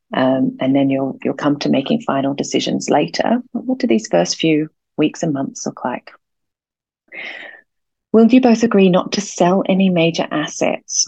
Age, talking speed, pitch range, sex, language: 30-49, 175 wpm, 150-190 Hz, female, English